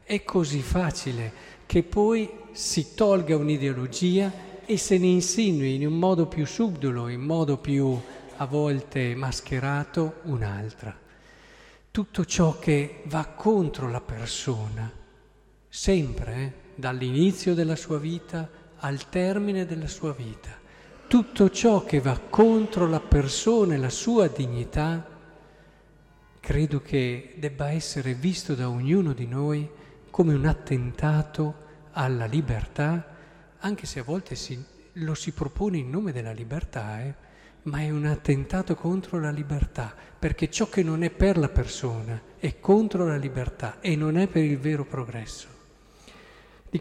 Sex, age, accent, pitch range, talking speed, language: male, 50-69, native, 130-175 Hz, 135 wpm, Italian